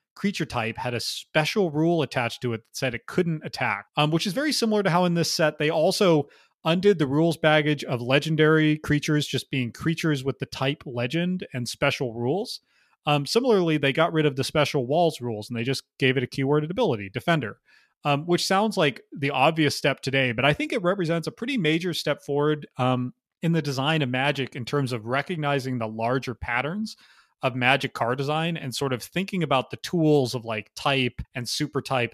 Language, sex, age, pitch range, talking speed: English, male, 30-49, 125-160 Hz, 205 wpm